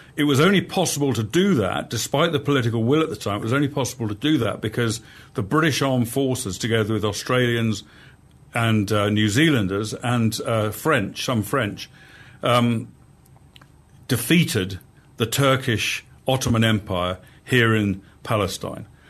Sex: male